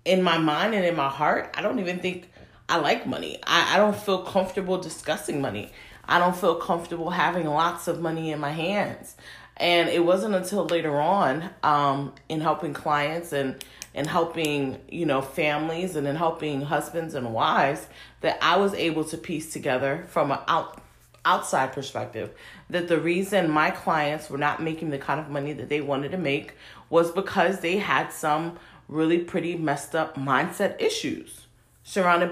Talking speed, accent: 175 wpm, American